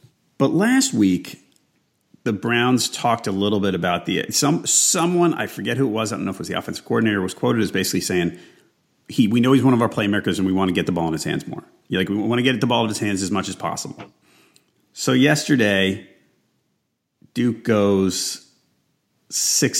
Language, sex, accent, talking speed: English, male, American, 215 wpm